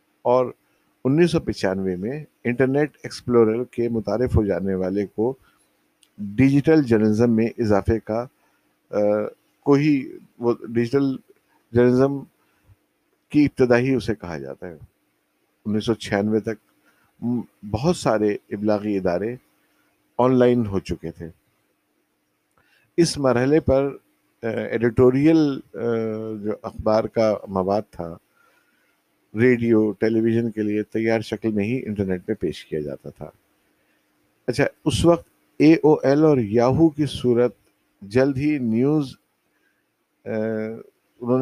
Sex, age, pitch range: male, 50-69, 105-130 Hz